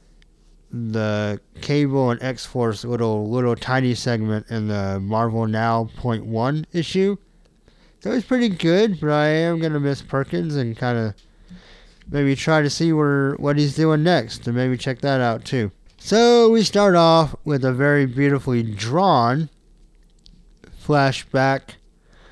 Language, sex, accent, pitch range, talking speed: English, male, American, 115-160 Hz, 145 wpm